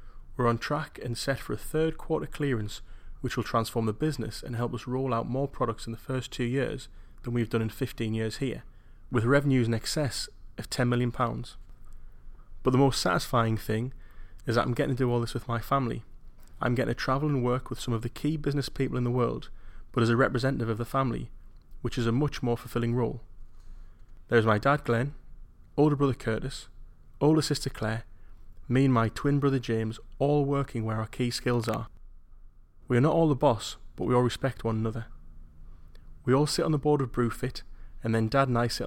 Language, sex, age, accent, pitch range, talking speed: English, male, 30-49, British, 110-130 Hz, 210 wpm